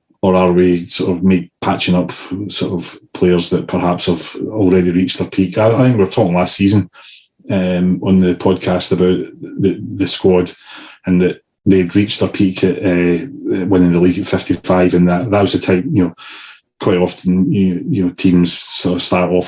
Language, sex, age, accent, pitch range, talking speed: English, male, 30-49, British, 90-95 Hz, 200 wpm